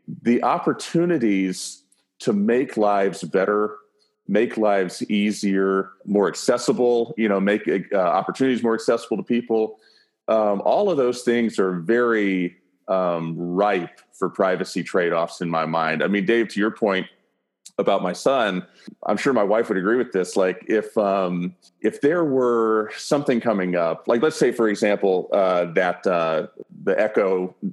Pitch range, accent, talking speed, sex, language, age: 95-115 Hz, American, 155 wpm, male, English, 30-49